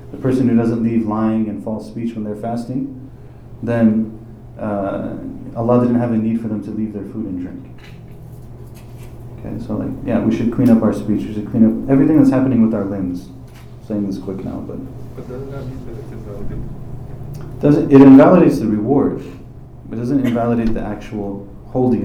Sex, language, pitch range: male, English, 110-130 Hz